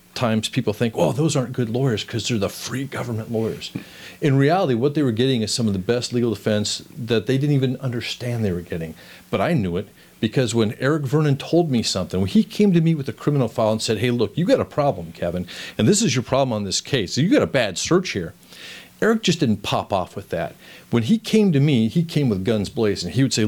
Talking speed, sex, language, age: 250 wpm, male, English, 40-59